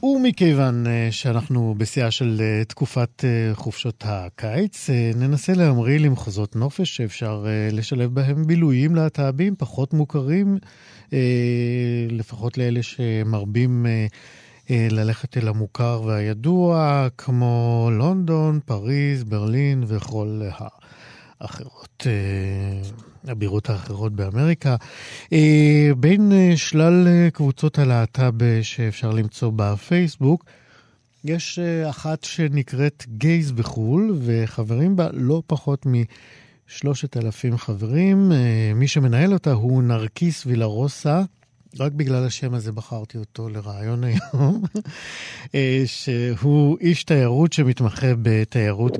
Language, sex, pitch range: Hebrew, male, 110-145 Hz